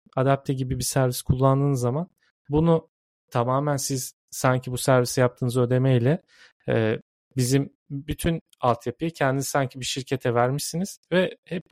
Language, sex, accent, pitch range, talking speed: Turkish, male, native, 120-140 Hz, 125 wpm